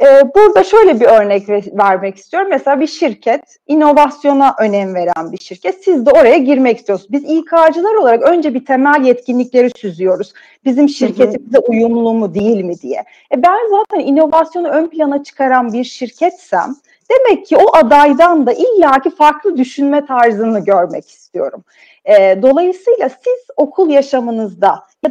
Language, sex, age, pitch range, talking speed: Turkish, female, 40-59, 220-305 Hz, 145 wpm